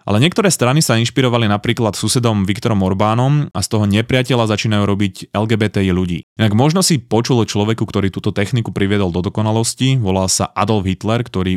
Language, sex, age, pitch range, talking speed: Slovak, male, 20-39, 100-125 Hz, 170 wpm